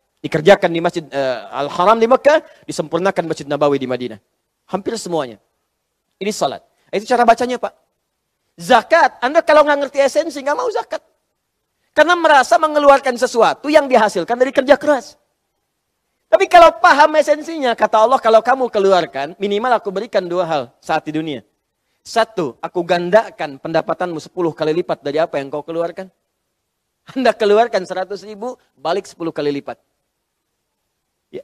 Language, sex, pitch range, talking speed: Indonesian, male, 170-275 Hz, 145 wpm